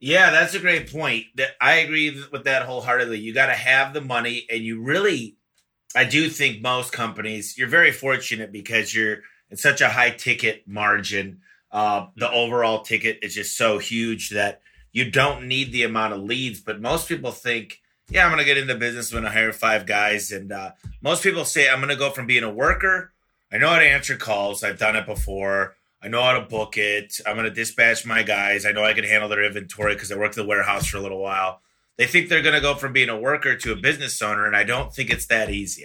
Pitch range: 105-130 Hz